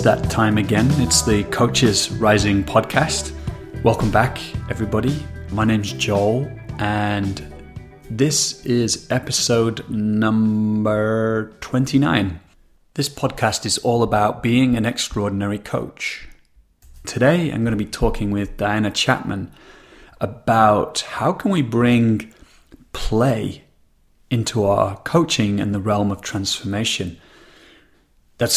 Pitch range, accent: 100-120 Hz, British